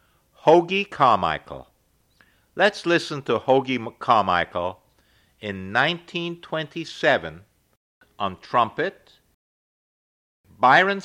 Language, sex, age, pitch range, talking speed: English, male, 60-79, 95-150 Hz, 65 wpm